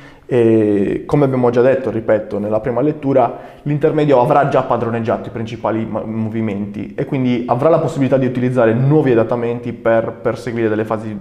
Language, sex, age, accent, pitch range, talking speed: Italian, male, 20-39, native, 115-130 Hz, 155 wpm